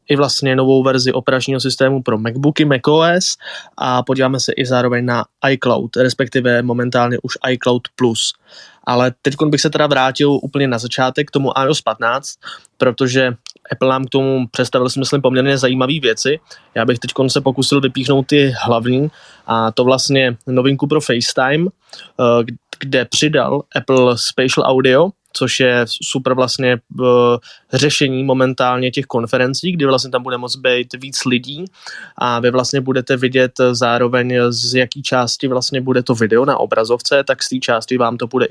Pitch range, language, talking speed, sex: 120-135 Hz, Czech, 160 wpm, male